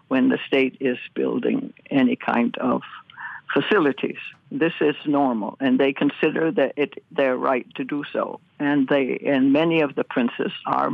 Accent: American